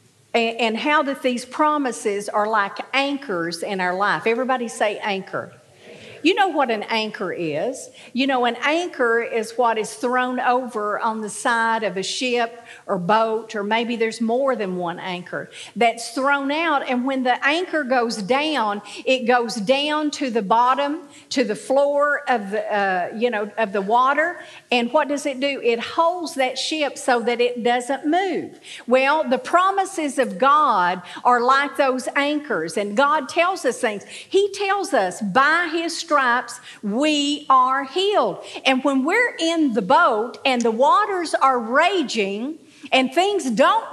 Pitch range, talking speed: 235-305 Hz, 165 wpm